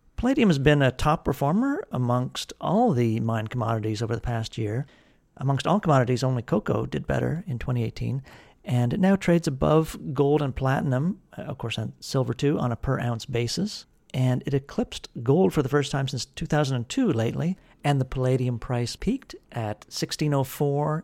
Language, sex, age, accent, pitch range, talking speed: English, male, 50-69, American, 120-145 Hz, 170 wpm